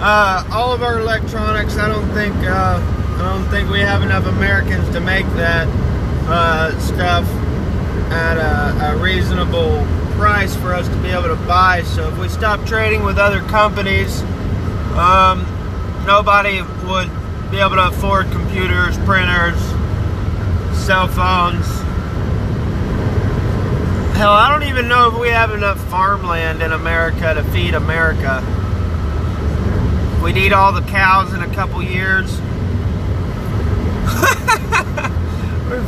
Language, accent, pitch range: English, American, 90-100 Hz